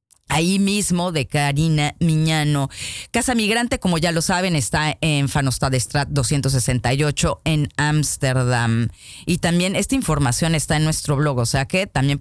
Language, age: Polish, 30-49